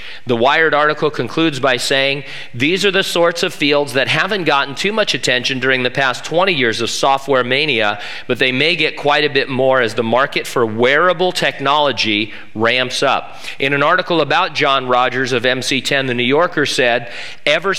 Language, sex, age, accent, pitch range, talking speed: English, male, 40-59, American, 130-165 Hz, 185 wpm